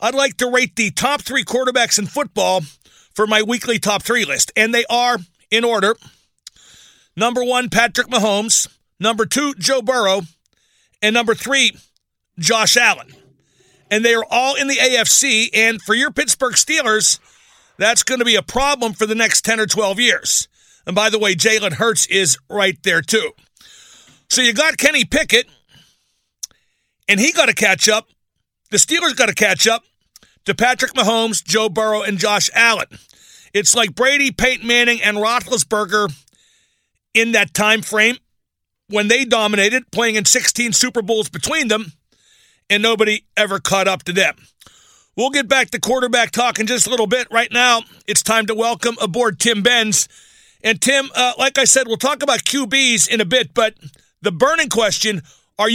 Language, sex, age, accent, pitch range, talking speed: English, male, 50-69, American, 210-255 Hz, 170 wpm